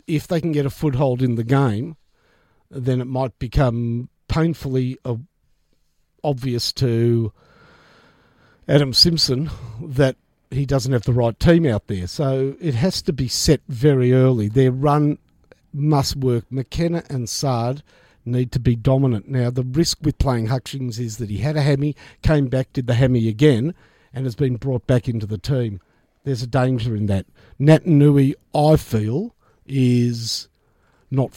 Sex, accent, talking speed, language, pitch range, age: male, Australian, 160 wpm, English, 120-150 Hz, 50-69